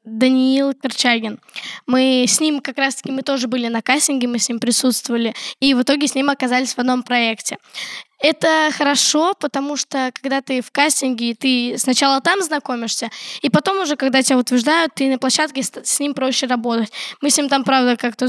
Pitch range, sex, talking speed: 245-285 Hz, female, 185 wpm